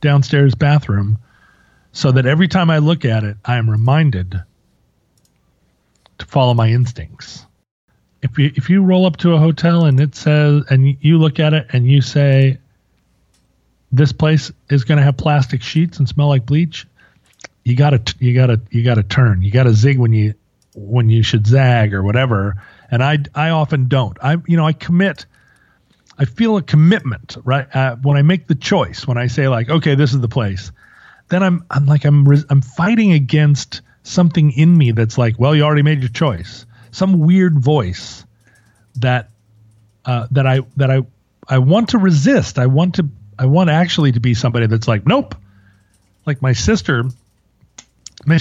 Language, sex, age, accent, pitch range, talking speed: English, male, 40-59, American, 115-155 Hz, 180 wpm